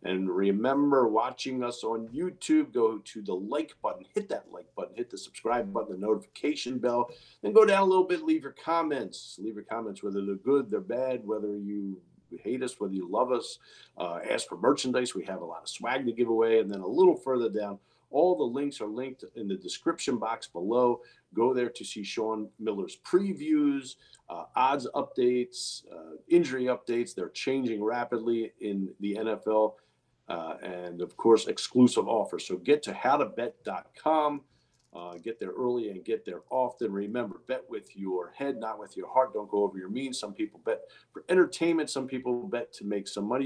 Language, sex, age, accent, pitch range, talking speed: English, male, 50-69, American, 105-140 Hz, 190 wpm